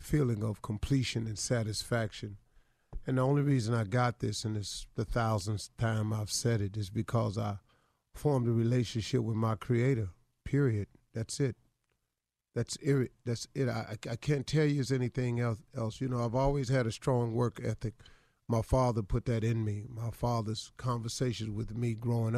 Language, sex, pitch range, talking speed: English, male, 110-130 Hz, 175 wpm